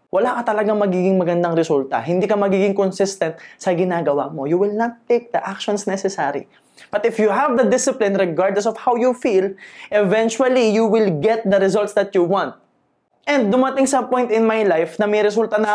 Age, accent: 20-39, native